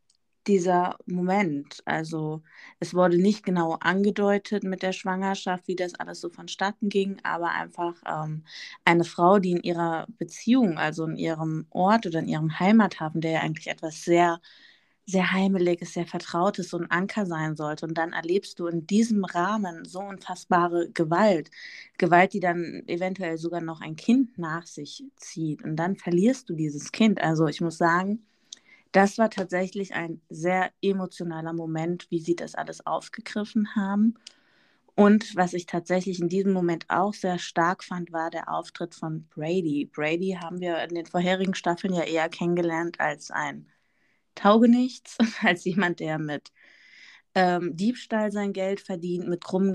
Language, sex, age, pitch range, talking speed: German, female, 20-39, 170-200 Hz, 160 wpm